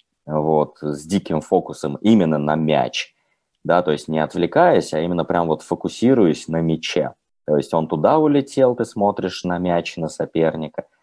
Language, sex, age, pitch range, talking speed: Russian, male, 20-39, 75-100 Hz, 165 wpm